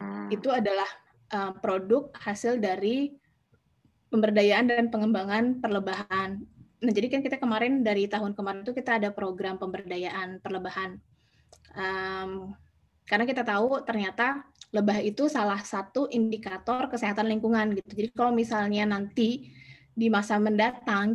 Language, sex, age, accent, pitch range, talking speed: Indonesian, female, 20-39, native, 195-230 Hz, 125 wpm